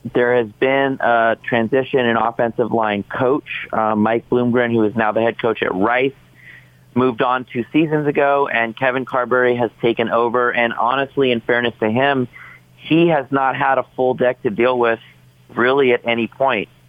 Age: 30-49